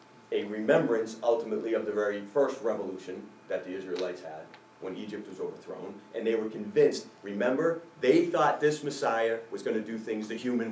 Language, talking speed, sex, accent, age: English, 180 wpm, male, American, 40-59